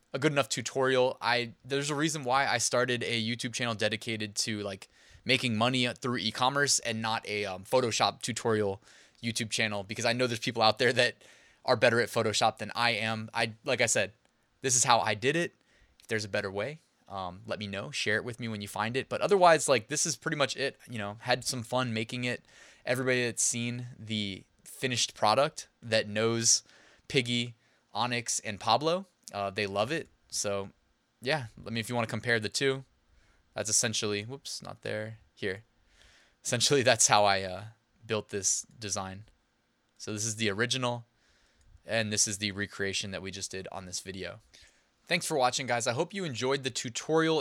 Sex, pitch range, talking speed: male, 110-135 Hz, 195 wpm